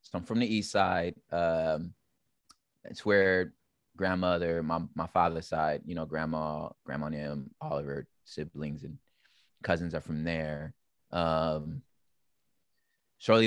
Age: 20-39